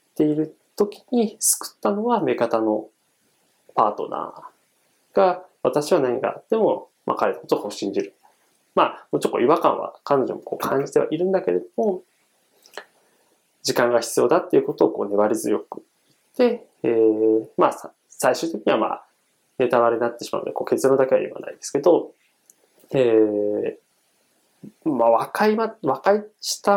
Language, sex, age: Japanese, male, 20-39